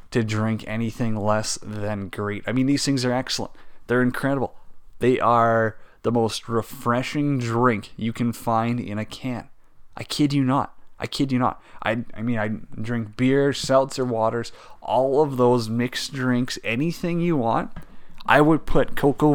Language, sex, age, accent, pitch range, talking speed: English, male, 30-49, American, 110-125 Hz, 165 wpm